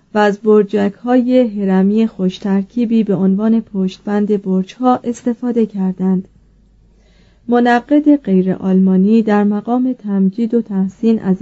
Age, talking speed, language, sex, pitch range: 30-49, 125 wpm, Persian, female, 190-230 Hz